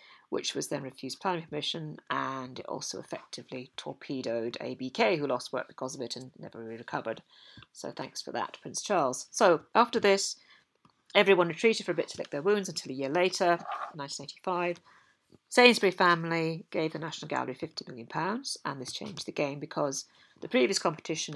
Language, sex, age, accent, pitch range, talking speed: English, female, 40-59, British, 140-190 Hz, 175 wpm